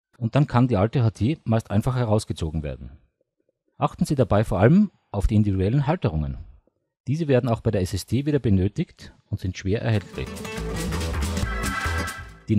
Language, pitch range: German, 95-140 Hz